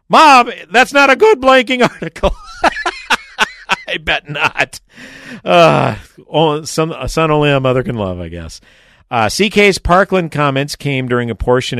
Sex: male